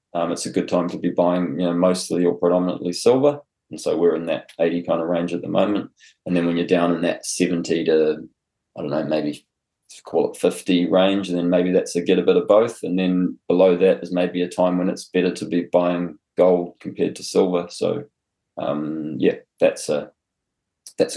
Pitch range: 85-95 Hz